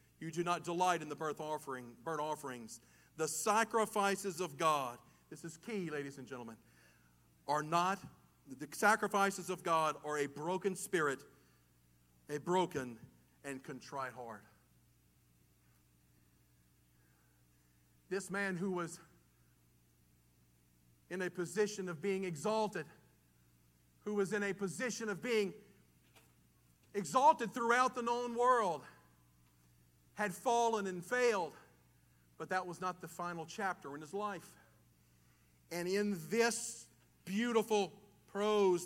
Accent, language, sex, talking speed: American, English, male, 115 wpm